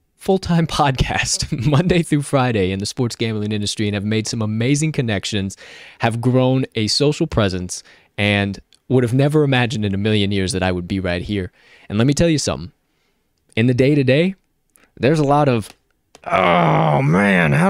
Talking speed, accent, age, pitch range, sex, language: 175 wpm, American, 20-39, 95-130 Hz, male, English